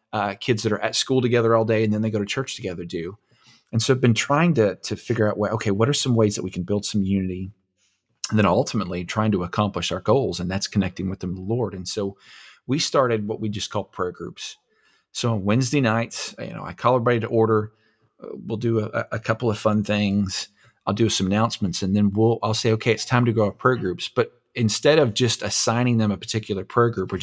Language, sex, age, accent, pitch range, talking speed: English, male, 40-59, American, 100-115 Hz, 245 wpm